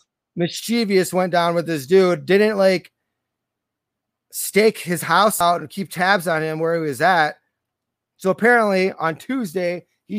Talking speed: 155 wpm